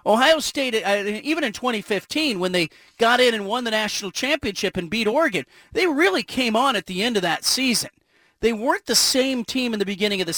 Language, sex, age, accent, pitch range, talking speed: English, male, 40-59, American, 200-275 Hz, 215 wpm